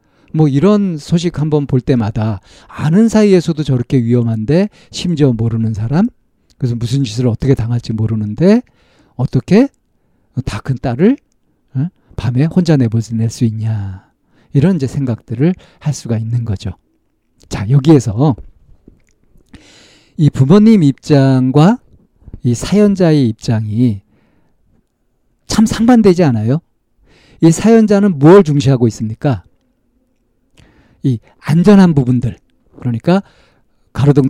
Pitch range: 120-180 Hz